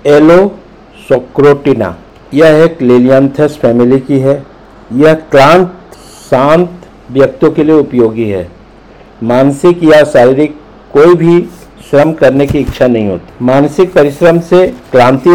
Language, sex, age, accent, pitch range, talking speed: Hindi, male, 50-69, native, 135-165 Hz, 120 wpm